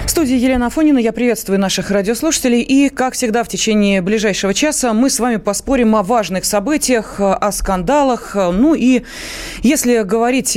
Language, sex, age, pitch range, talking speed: Russian, female, 30-49, 185-250 Hz, 160 wpm